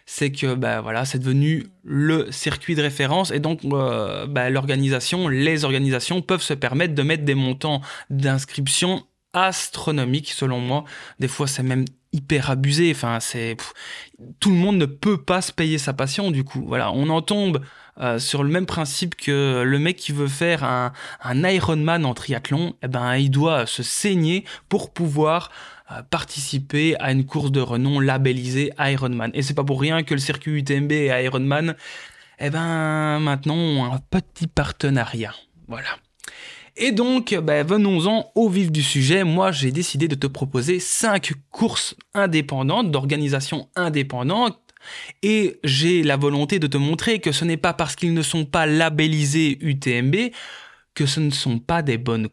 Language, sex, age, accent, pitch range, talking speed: French, male, 20-39, French, 135-170 Hz, 170 wpm